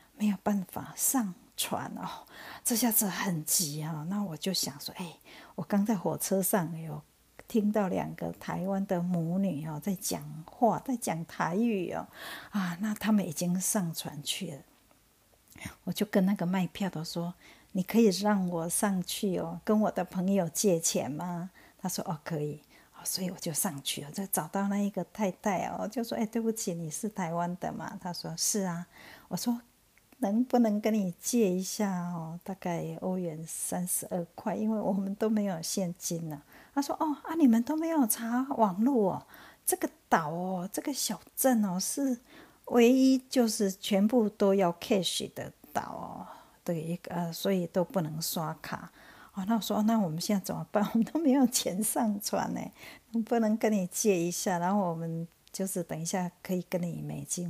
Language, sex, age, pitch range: Chinese, female, 50-69, 175-220 Hz